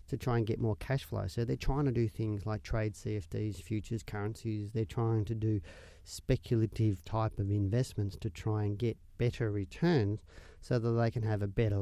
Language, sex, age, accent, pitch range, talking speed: English, male, 40-59, Australian, 105-120 Hz, 200 wpm